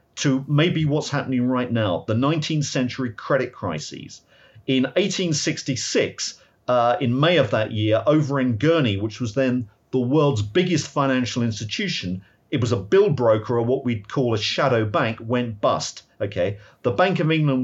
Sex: male